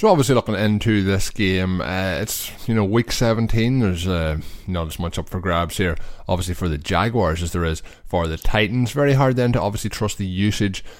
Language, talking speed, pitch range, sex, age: English, 215 wpm, 85-100 Hz, male, 20-39